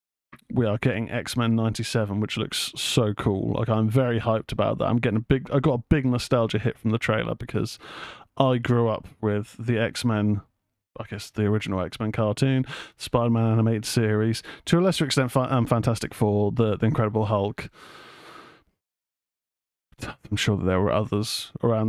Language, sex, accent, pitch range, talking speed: English, male, British, 110-145 Hz, 170 wpm